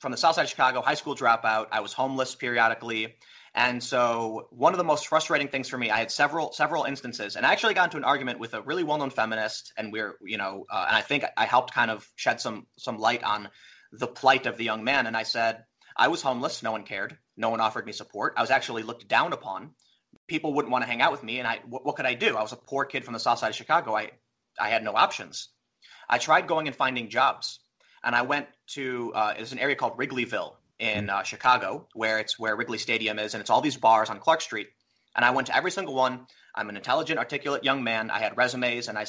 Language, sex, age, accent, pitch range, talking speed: English, male, 30-49, American, 110-140 Hz, 255 wpm